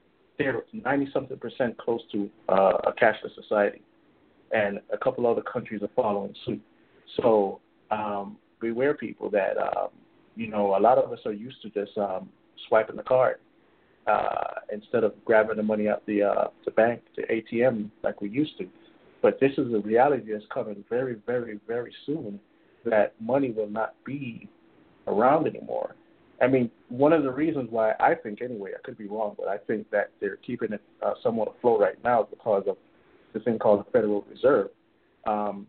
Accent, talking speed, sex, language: American, 180 wpm, male, English